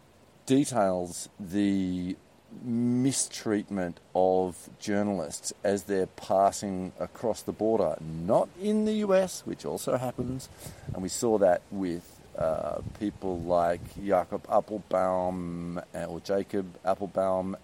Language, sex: English, male